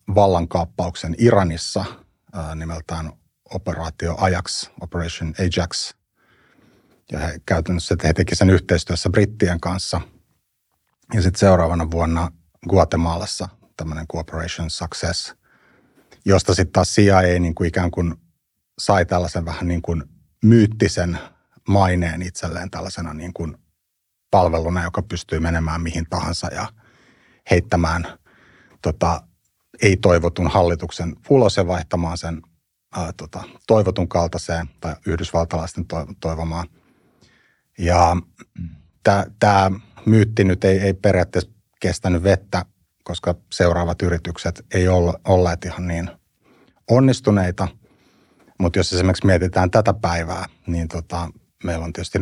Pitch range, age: 85-95 Hz, 30-49